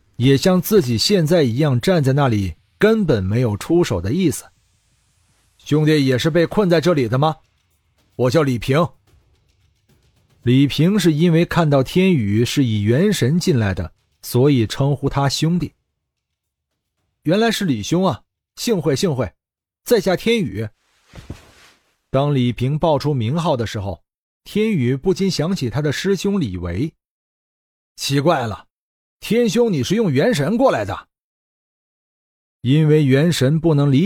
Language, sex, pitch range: Chinese, male, 110-175 Hz